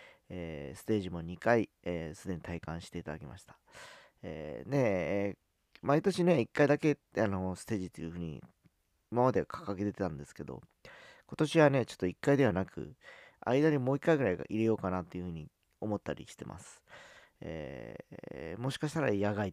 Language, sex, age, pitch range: Japanese, male, 40-59, 90-120 Hz